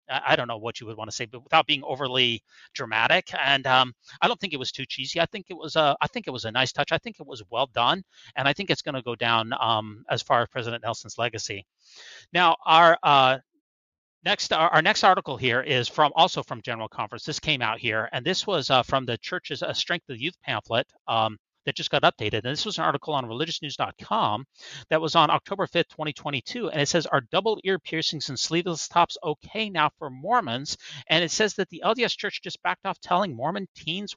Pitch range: 130-170 Hz